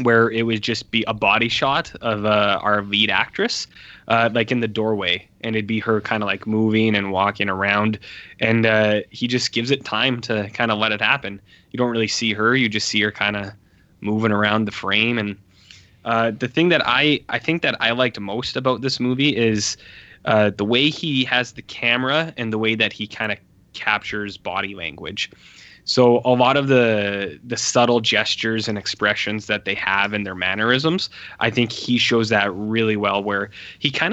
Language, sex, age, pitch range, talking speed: English, male, 10-29, 105-120 Hz, 205 wpm